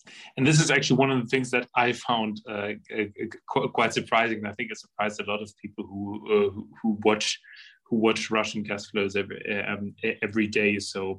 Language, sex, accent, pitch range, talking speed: English, male, German, 100-115 Hz, 205 wpm